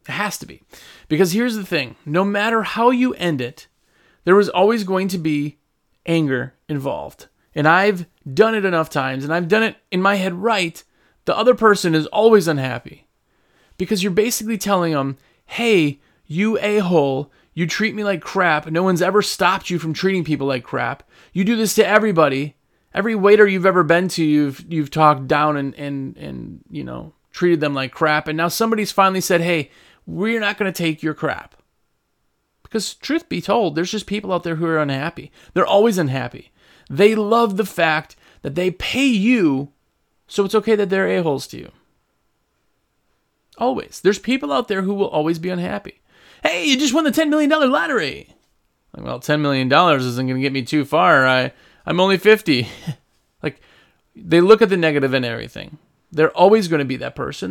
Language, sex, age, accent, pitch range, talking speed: English, male, 30-49, American, 150-210 Hz, 190 wpm